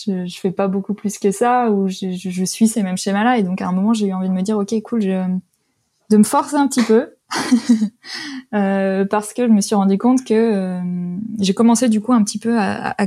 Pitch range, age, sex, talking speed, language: 190-220 Hz, 20-39, female, 255 wpm, French